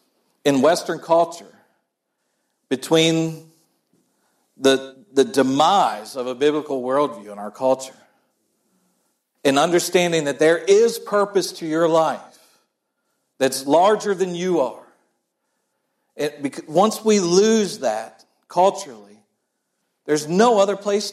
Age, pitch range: 50-69, 140-180 Hz